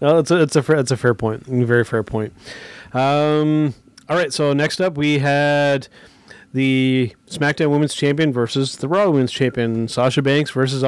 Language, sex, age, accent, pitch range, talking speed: English, male, 30-49, American, 120-145 Hz, 190 wpm